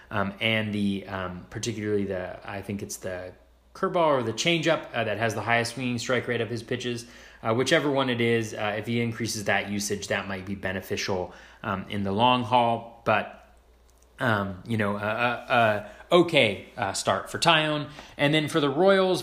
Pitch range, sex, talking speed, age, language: 100-120 Hz, male, 190 wpm, 30-49, English